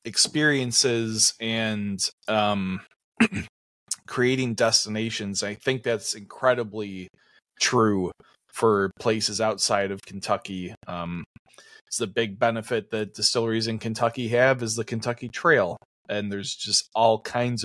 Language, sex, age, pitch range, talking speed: English, male, 20-39, 95-115 Hz, 115 wpm